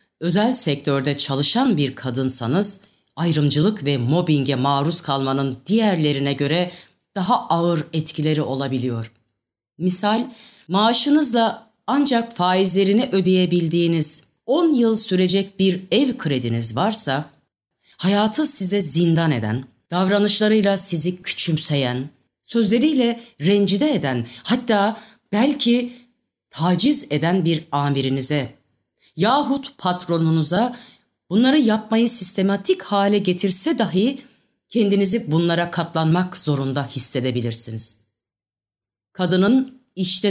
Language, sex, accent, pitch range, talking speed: Turkish, female, native, 145-220 Hz, 90 wpm